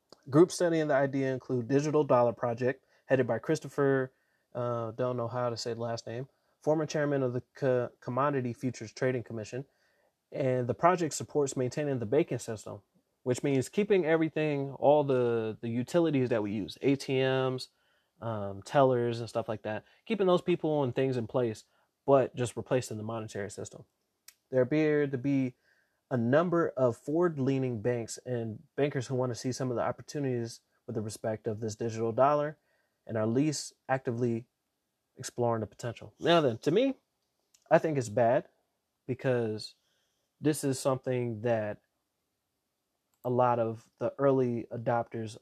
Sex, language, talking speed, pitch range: male, English, 160 wpm, 115-140 Hz